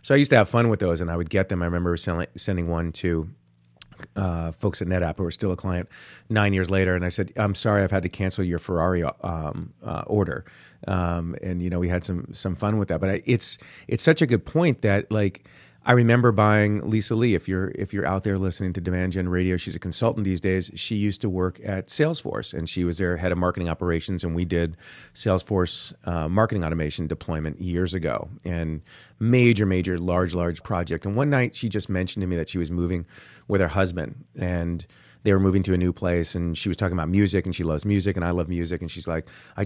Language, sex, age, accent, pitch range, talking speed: English, male, 30-49, American, 90-105 Hz, 240 wpm